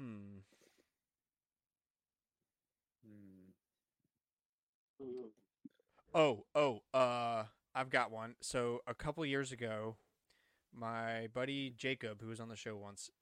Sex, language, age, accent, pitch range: male, English, 20-39, American, 110-130 Hz